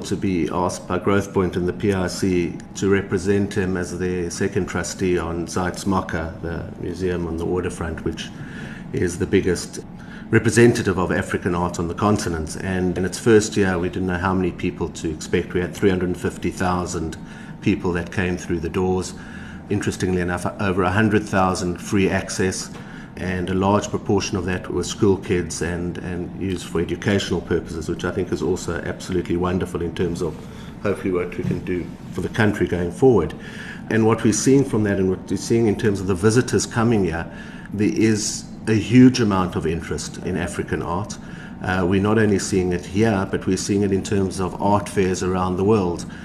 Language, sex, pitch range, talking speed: English, male, 90-100 Hz, 185 wpm